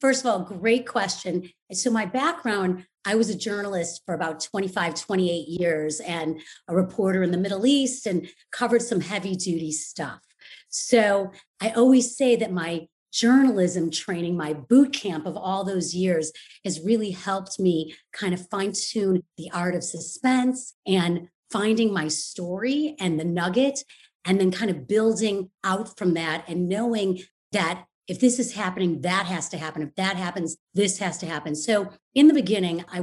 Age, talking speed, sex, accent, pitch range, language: 30-49, 175 wpm, female, American, 175-225 Hz, English